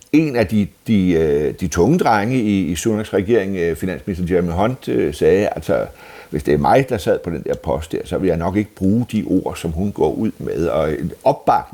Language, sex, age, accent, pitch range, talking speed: Danish, male, 60-79, native, 95-130 Hz, 215 wpm